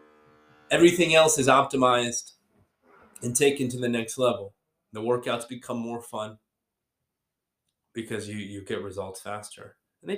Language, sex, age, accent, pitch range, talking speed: English, male, 20-39, American, 115-155 Hz, 135 wpm